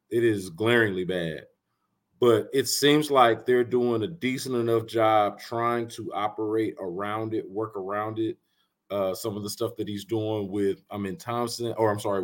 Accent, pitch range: American, 100-125 Hz